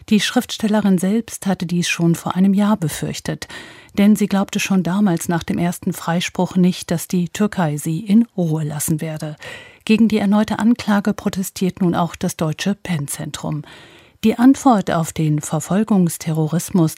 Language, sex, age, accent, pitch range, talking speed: German, female, 50-69, German, 165-205 Hz, 150 wpm